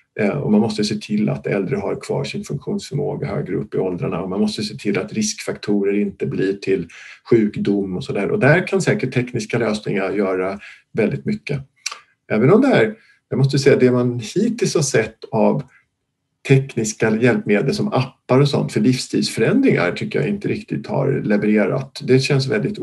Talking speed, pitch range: 175 wpm, 105-150 Hz